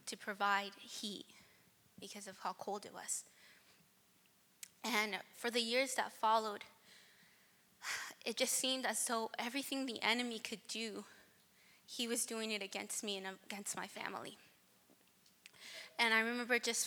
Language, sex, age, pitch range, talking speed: English, female, 20-39, 200-230 Hz, 140 wpm